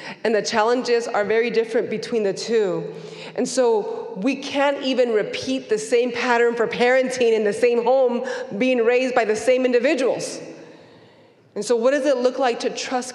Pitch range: 185-250 Hz